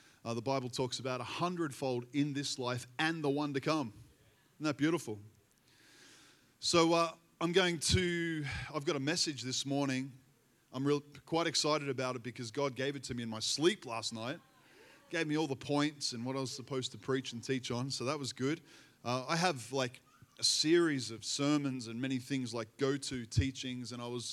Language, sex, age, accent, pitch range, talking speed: English, male, 20-39, Australian, 125-150 Hz, 200 wpm